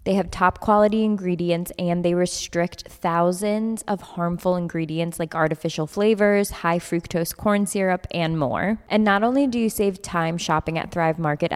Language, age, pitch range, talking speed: English, 20-39, 165-200 Hz, 165 wpm